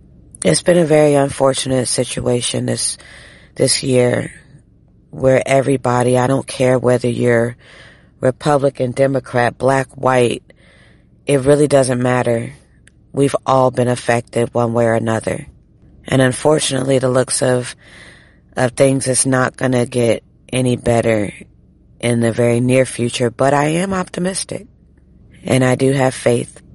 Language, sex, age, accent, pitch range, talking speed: English, female, 40-59, American, 120-135 Hz, 135 wpm